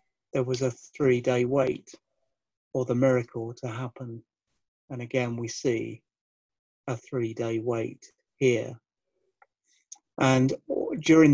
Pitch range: 125-140 Hz